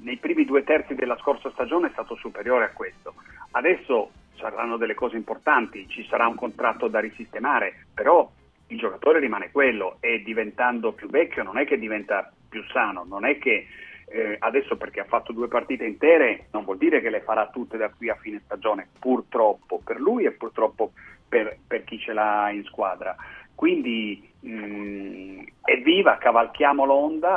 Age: 40-59